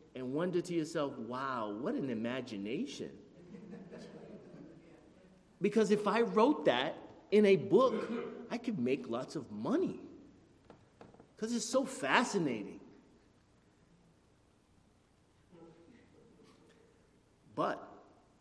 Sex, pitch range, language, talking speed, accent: male, 155-225 Hz, English, 90 wpm, American